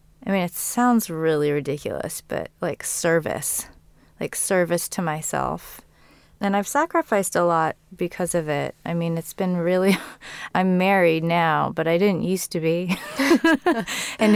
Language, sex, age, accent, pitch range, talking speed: English, female, 30-49, American, 165-195 Hz, 150 wpm